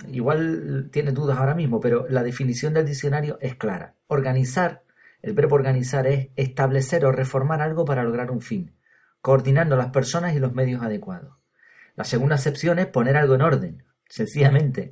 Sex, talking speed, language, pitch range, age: male, 165 wpm, Spanish, 130-165 Hz, 40-59